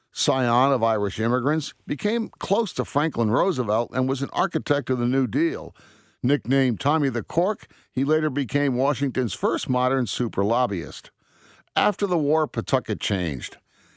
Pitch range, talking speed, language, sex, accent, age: 110-145 Hz, 145 wpm, English, male, American, 50-69